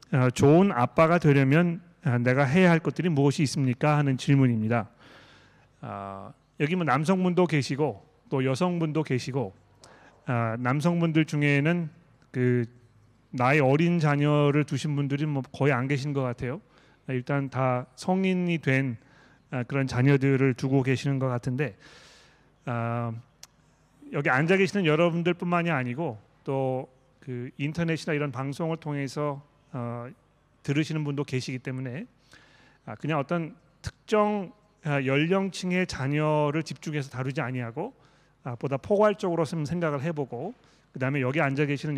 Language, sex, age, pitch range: Korean, male, 30-49, 130-160 Hz